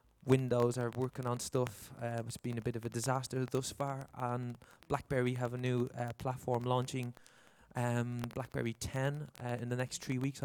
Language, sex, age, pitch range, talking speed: Dutch, male, 20-39, 120-130 Hz, 185 wpm